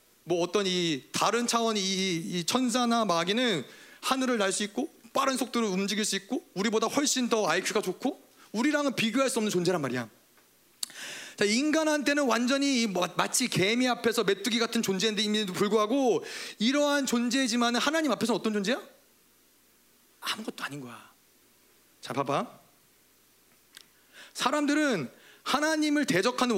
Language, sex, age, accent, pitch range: Korean, male, 30-49, native, 200-260 Hz